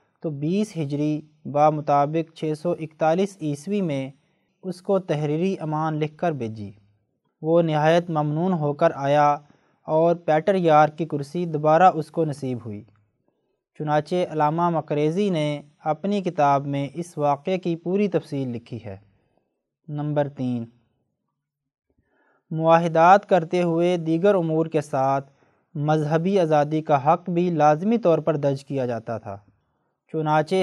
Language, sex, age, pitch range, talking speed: Urdu, male, 20-39, 145-180 Hz, 135 wpm